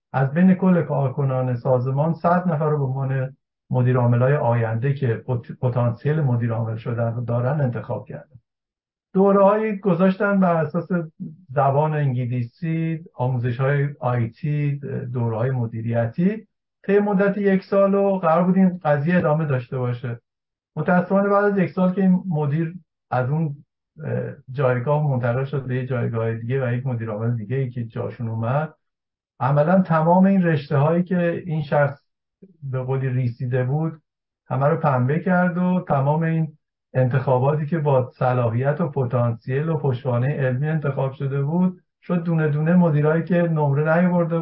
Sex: male